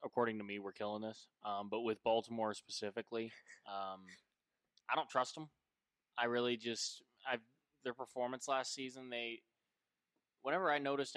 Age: 20-39